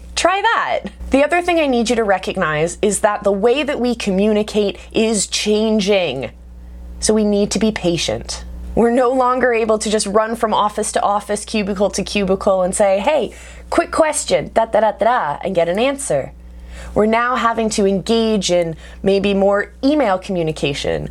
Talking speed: 175 wpm